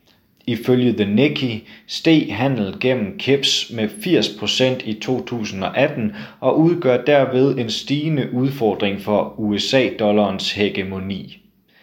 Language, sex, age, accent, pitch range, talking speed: Danish, male, 30-49, native, 105-135 Hz, 100 wpm